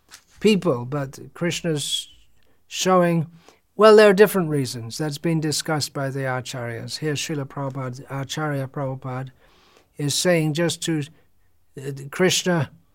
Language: English